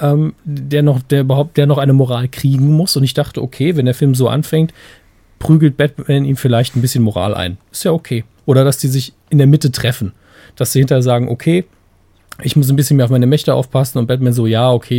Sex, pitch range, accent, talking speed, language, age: male, 115-150 Hz, German, 215 wpm, German, 40-59